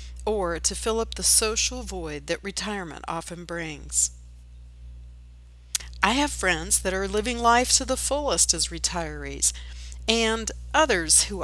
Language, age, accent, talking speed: English, 50-69, American, 135 wpm